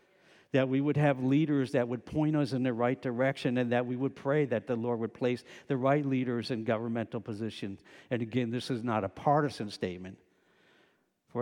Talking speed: 200 wpm